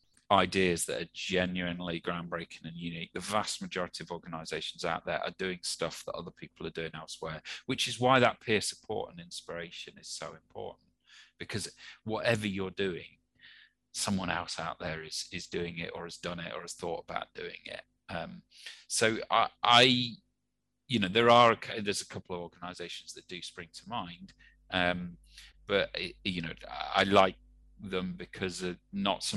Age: 40-59